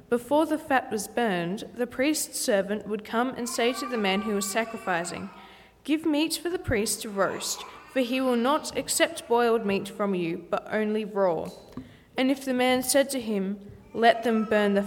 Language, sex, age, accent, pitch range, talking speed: English, female, 20-39, Australian, 205-265 Hz, 195 wpm